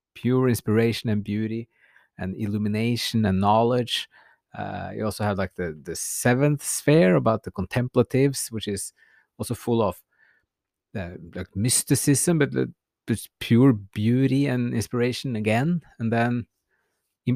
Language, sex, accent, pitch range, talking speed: English, male, Norwegian, 100-130 Hz, 130 wpm